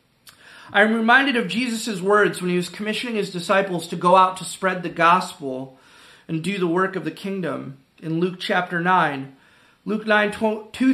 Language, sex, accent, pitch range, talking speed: English, male, American, 180-225 Hz, 175 wpm